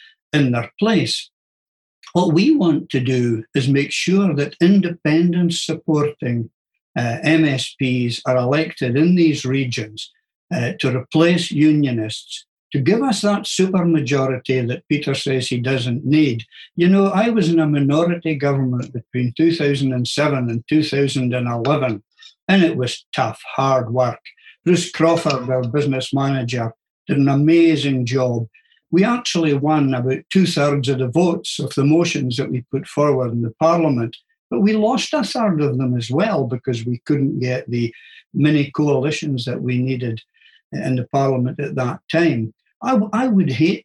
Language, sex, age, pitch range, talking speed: English, male, 60-79, 125-165 Hz, 150 wpm